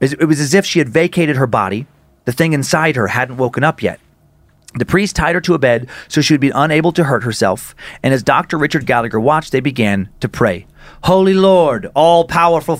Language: English